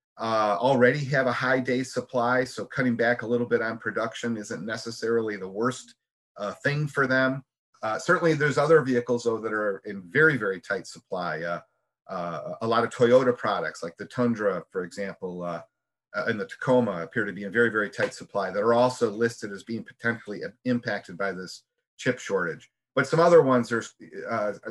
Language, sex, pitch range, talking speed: English, male, 110-130 Hz, 190 wpm